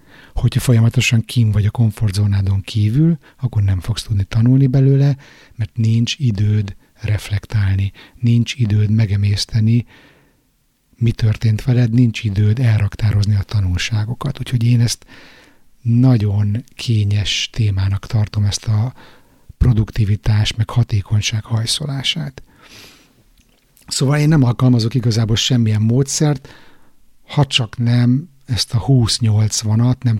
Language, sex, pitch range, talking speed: Hungarian, male, 105-125 Hz, 110 wpm